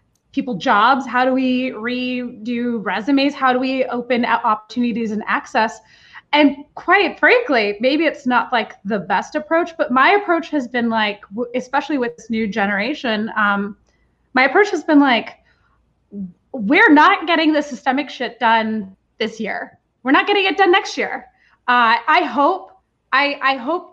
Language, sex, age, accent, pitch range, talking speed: English, female, 20-39, American, 225-290 Hz, 160 wpm